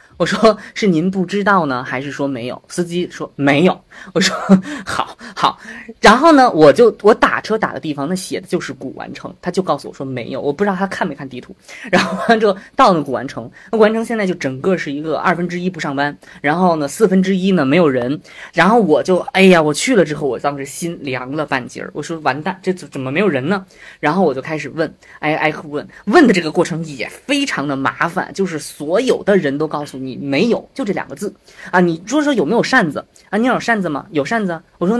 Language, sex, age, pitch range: Chinese, female, 20-39, 150-215 Hz